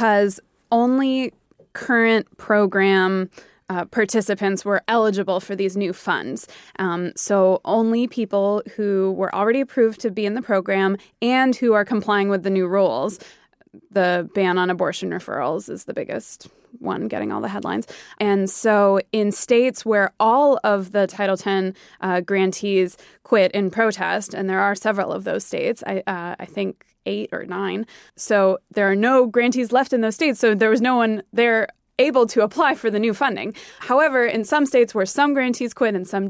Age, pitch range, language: 20-39, 195-240 Hz, English